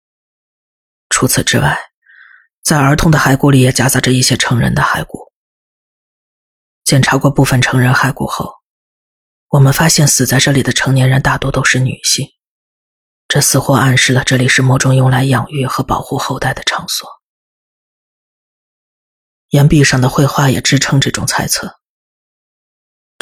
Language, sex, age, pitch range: Chinese, female, 20-39, 125-140 Hz